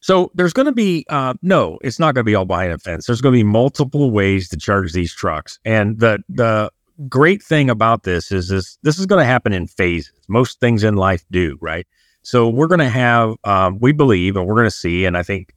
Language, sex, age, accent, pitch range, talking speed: English, male, 30-49, American, 95-120 Hz, 245 wpm